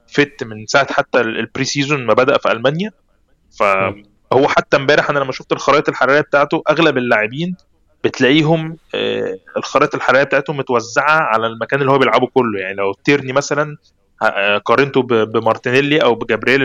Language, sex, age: Arabic, male, 20-39